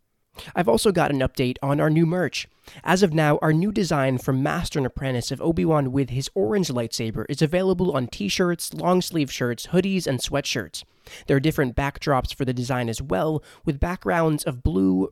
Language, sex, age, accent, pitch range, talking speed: English, male, 20-39, American, 125-165 Hz, 185 wpm